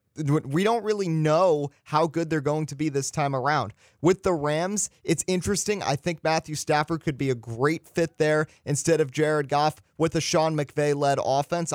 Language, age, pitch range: English, 30-49, 135-170 Hz